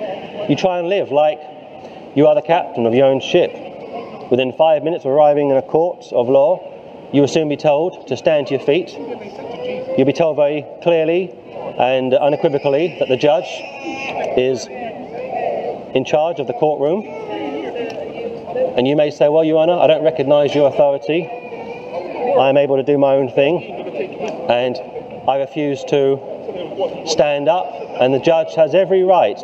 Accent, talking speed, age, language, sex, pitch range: British, 165 wpm, 40-59, English, male, 145-180 Hz